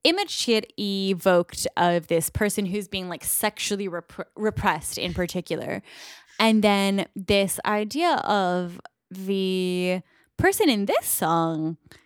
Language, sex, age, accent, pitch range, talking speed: English, female, 10-29, American, 180-270 Hz, 120 wpm